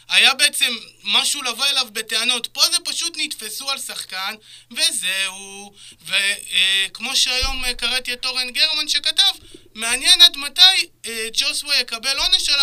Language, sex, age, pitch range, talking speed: Hebrew, male, 30-49, 215-290 Hz, 140 wpm